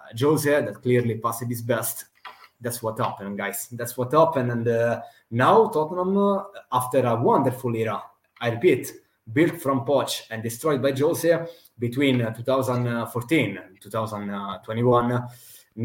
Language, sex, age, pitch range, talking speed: English, male, 20-39, 110-145 Hz, 135 wpm